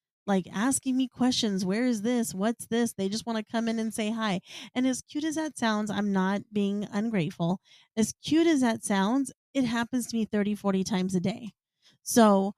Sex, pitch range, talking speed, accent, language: female, 195-250 Hz, 205 wpm, American, English